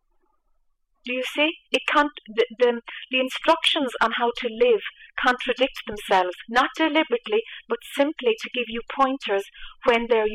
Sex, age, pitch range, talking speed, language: female, 40-59, 220-270 Hz, 145 wpm, English